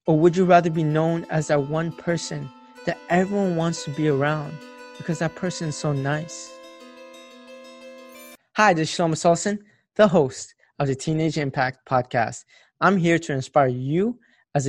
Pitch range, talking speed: 140-175 Hz, 165 wpm